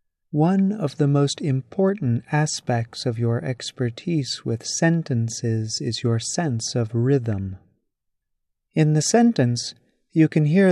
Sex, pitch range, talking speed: male, 120-160 Hz, 125 wpm